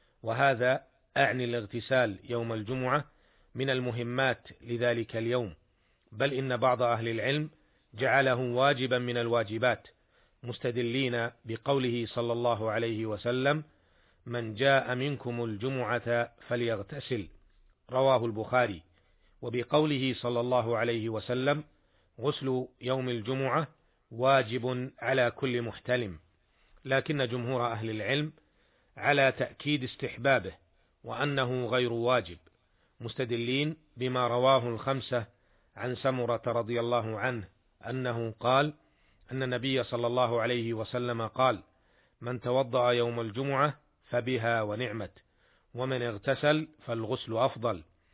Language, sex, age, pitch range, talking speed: Arabic, male, 40-59, 115-130 Hz, 100 wpm